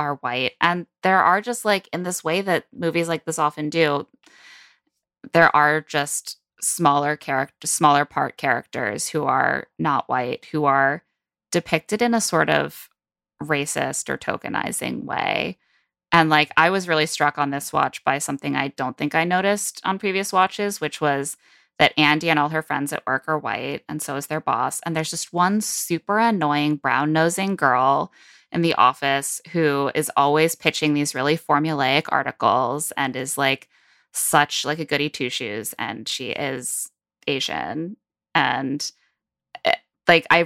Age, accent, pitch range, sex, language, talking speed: 20-39, American, 145-170 Hz, female, English, 165 wpm